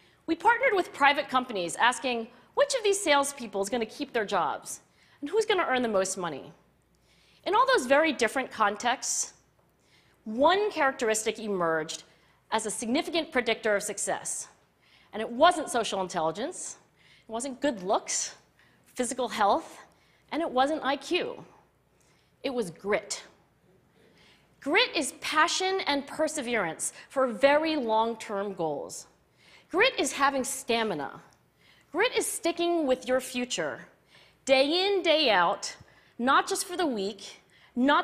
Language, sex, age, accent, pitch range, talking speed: English, female, 40-59, American, 215-310 Hz, 135 wpm